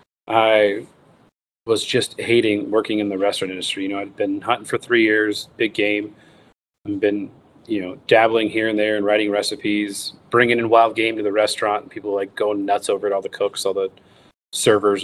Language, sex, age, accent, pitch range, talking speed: English, male, 30-49, American, 100-120 Hz, 205 wpm